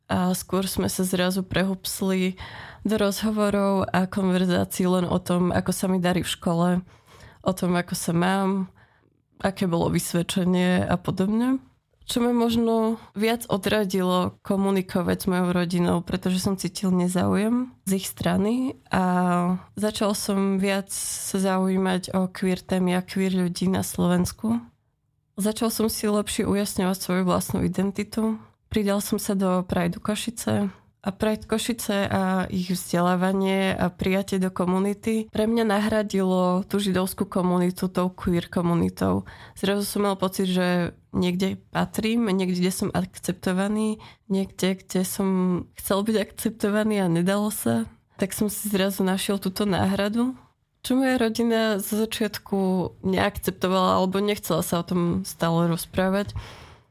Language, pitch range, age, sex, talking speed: Slovak, 180-205 Hz, 20-39, female, 140 wpm